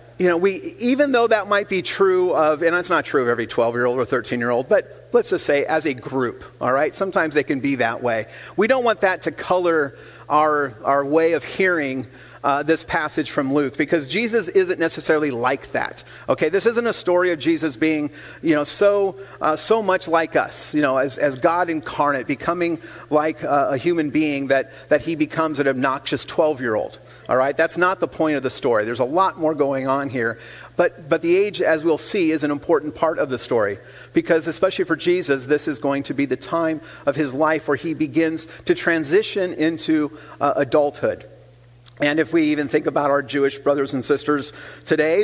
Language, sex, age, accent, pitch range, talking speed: English, male, 40-59, American, 140-170 Hz, 205 wpm